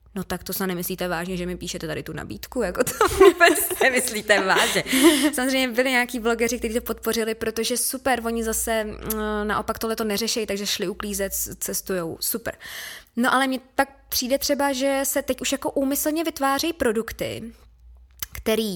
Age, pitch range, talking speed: 20-39, 190-255 Hz, 165 wpm